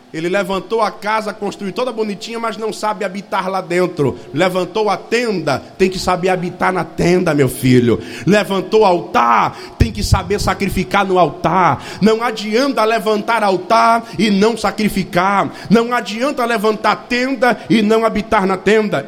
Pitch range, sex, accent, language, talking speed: 200-245 Hz, male, Brazilian, Portuguese, 155 wpm